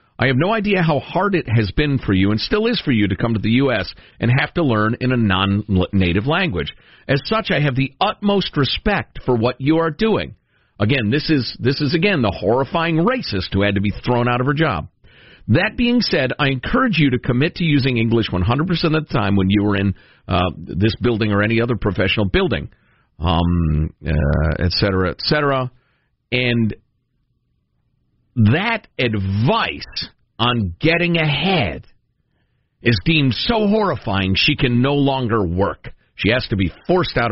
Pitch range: 100-145 Hz